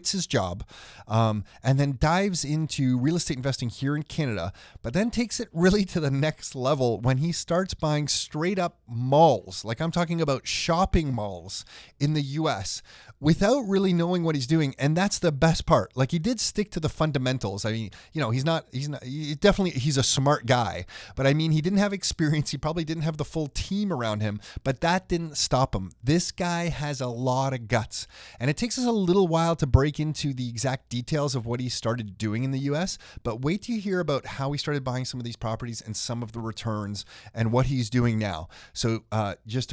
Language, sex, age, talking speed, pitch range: English, male, 30-49, 215 wpm, 120-165 Hz